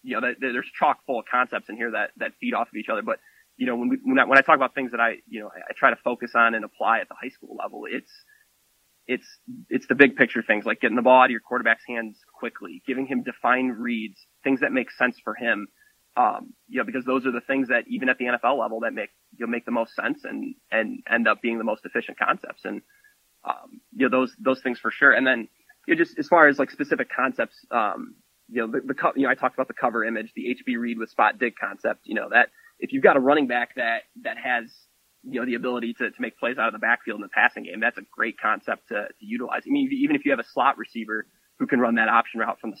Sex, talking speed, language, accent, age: male, 270 wpm, English, American, 20-39